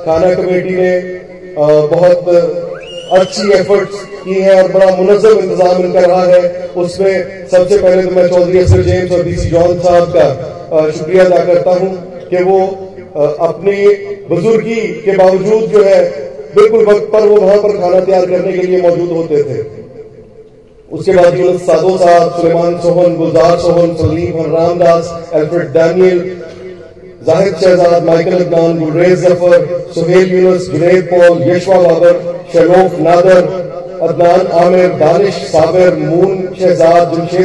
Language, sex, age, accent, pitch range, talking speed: Hindi, male, 30-49, native, 170-185 Hz, 105 wpm